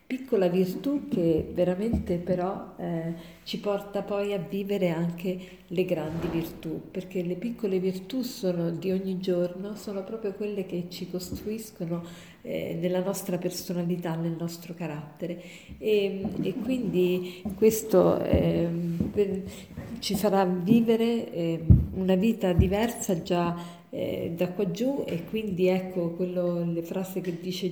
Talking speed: 130 wpm